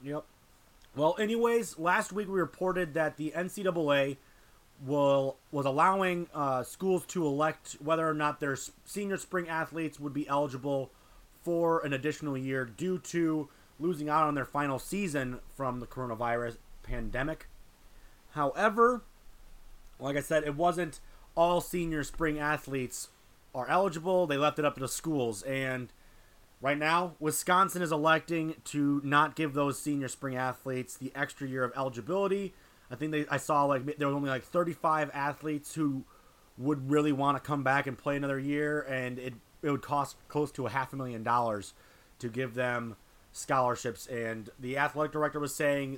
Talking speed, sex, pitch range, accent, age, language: 165 wpm, male, 125-155 Hz, American, 30-49, English